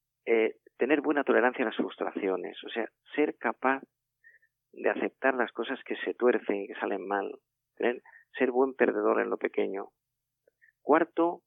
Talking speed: 150 wpm